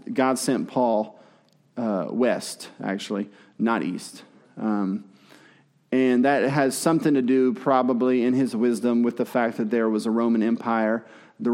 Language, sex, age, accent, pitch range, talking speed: English, male, 30-49, American, 110-130 Hz, 150 wpm